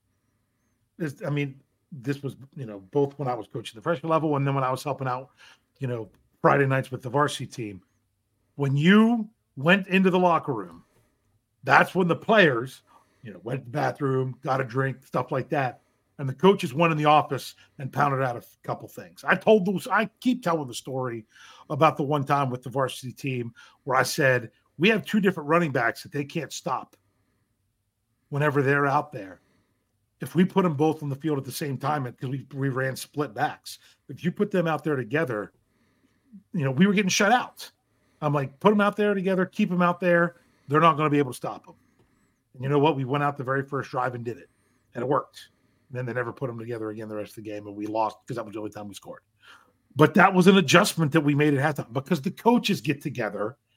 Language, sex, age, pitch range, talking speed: English, male, 40-59, 125-165 Hz, 230 wpm